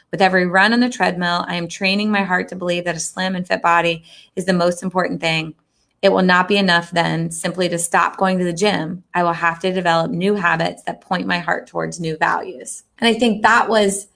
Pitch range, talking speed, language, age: 175-195 Hz, 235 wpm, English, 30-49